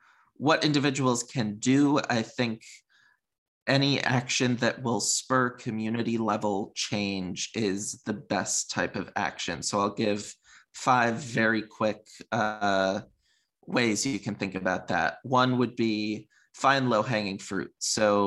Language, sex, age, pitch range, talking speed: English, male, 20-39, 105-125 Hz, 135 wpm